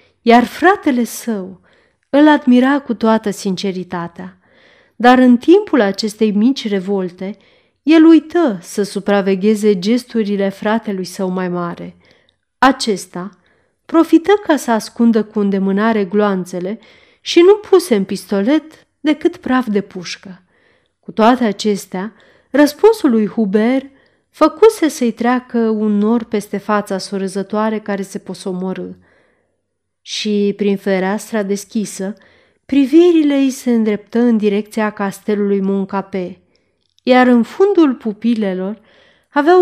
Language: Romanian